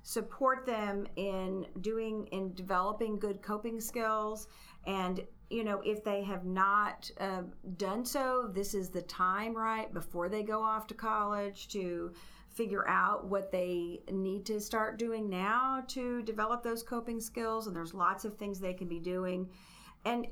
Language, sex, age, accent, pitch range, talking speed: English, female, 40-59, American, 190-230 Hz, 160 wpm